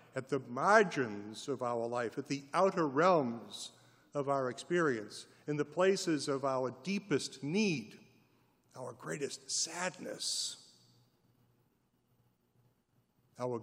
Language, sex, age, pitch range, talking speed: English, male, 60-79, 125-155 Hz, 105 wpm